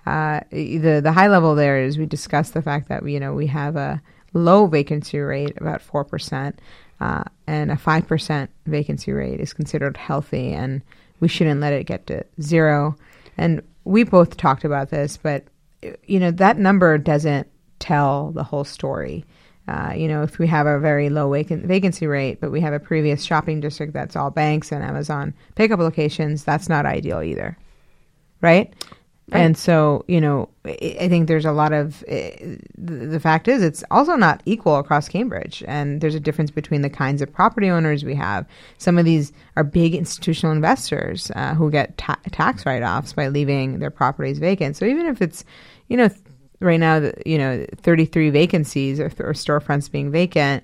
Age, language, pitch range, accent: 30-49, English, 145-165 Hz, American